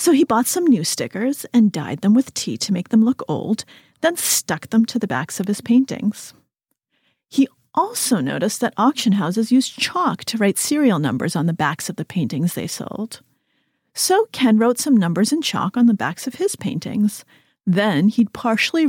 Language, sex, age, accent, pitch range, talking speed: English, female, 40-59, American, 195-260 Hz, 195 wpm